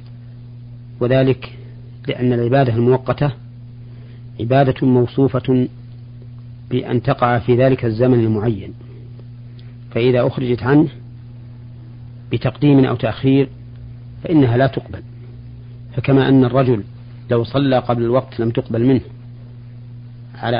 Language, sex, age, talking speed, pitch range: Arabic, male, 40-59, 95 wpm, 120-125 Hz